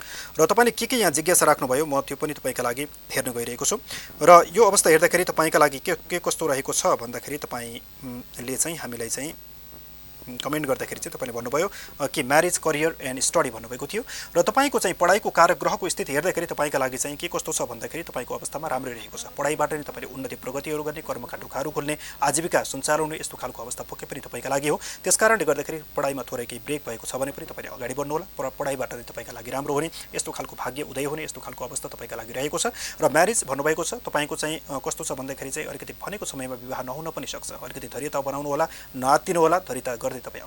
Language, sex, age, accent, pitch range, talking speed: English, male, 30-49, Indian, 135-170 Hz, 110 wpm